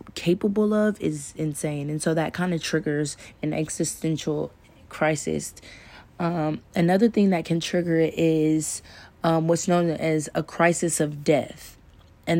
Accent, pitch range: American, 150-175 Hz